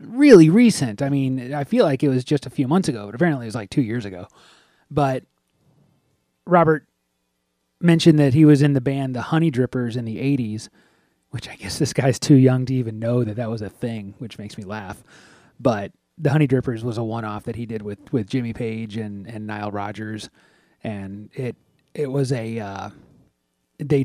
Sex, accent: male, American